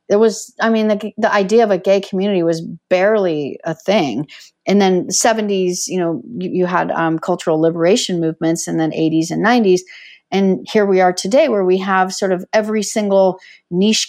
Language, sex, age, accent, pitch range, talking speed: English, female, 40-59, American, 170-205 Hz, 190 wpm